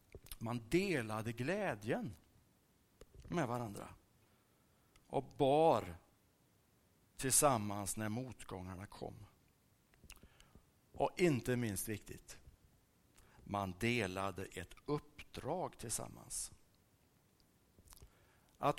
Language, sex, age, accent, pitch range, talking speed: Swedish, male, 60-79, Norwegian, 105-145 Hz, 65 wpm